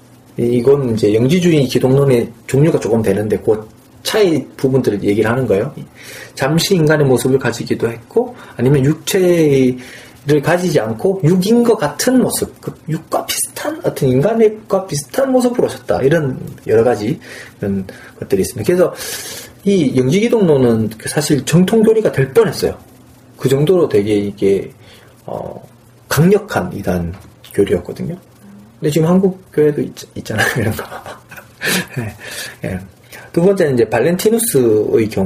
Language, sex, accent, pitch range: Korean, male, native, 115-175 Hz